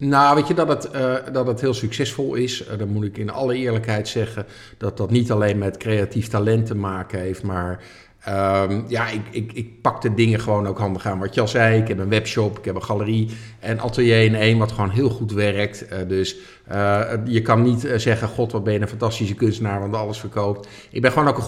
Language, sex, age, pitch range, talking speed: Dutch, male, 50-69, 110-130 Hz, 240 wpm